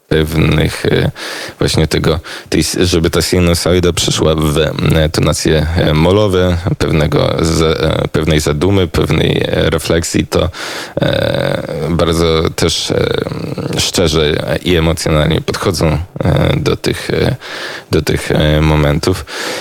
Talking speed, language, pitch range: 85 wpm, Polish, 80-90 Hz